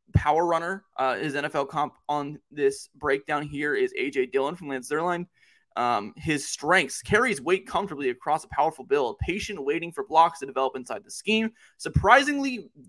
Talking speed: 170 wpm